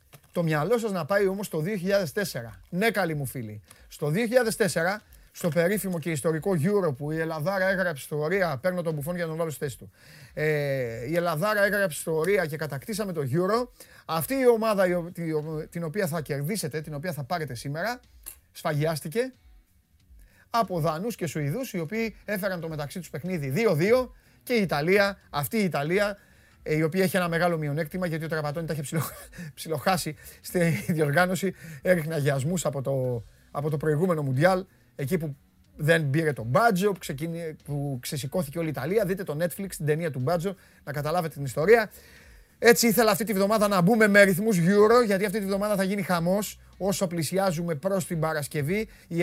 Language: Greek